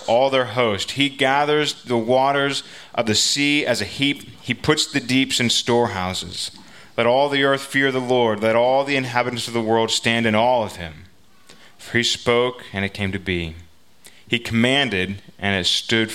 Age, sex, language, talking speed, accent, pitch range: 30-49, male, English, 190 wpm, American, 100-125 Hz